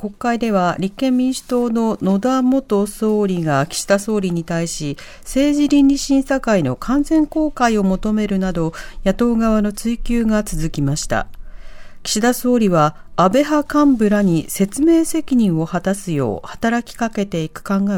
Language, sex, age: Japanese, female, 40-59